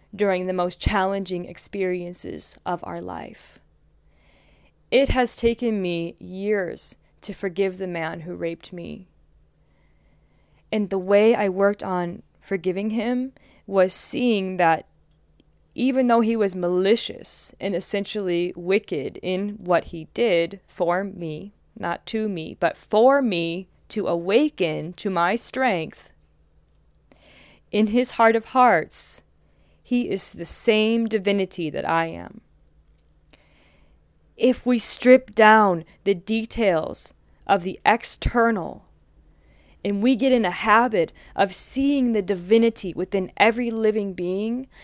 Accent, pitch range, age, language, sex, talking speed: American, 170-225 Hz, 20-39, English, female, 125 wpm